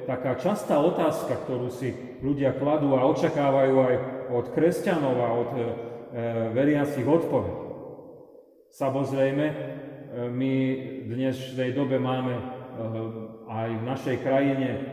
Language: Slovak